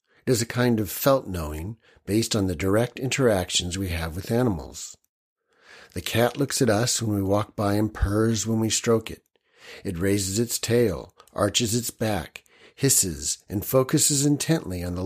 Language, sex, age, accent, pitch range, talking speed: English, male, 50-69, American, 95-120 Hz, 170 wpm